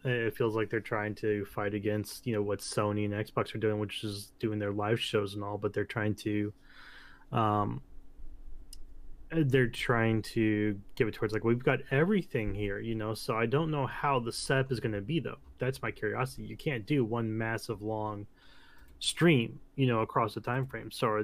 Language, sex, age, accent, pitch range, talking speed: English, male, 20-39, American, 105-130 Hz, 205 wpm